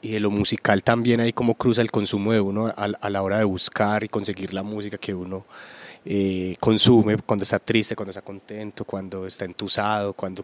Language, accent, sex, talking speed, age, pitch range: Spanish, Colombian, male, 205 wpm, 30-49, 110-135 Hz